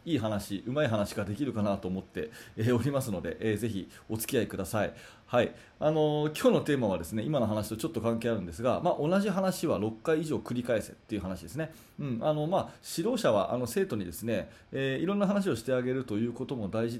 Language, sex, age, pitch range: Japanese, male, 30-49, 110-155 Hz